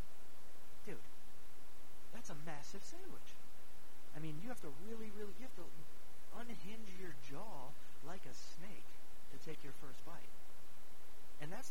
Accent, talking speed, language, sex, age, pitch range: American, 145 wpm, English, male, 30-49, 140-190 Hz